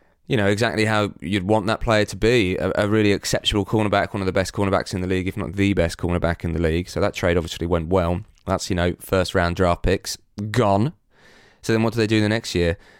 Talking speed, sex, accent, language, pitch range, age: 245 wpm, male, British, English, 85-100 Hz, 20-39